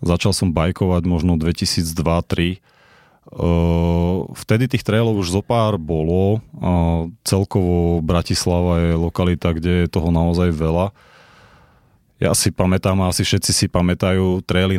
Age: 30-49